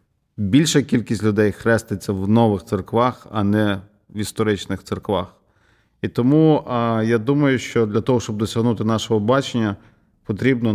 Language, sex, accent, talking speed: Ukrainian, male, native, 135 wpm